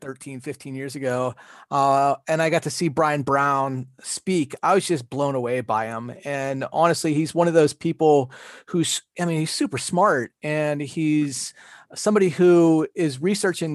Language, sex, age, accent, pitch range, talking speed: English, male, 30-49, American, 140-170 Hz, 170 wpm